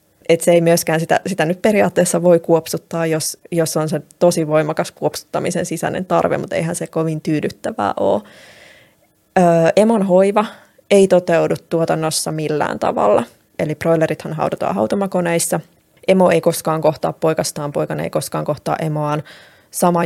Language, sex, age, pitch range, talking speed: Finnish, female, 20-39, 155-180 Hz, 145 wpm